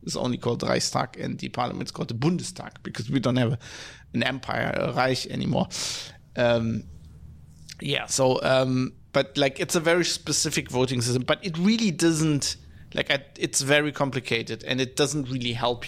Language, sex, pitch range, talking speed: English, male, 125-150 Hz, 170 wpm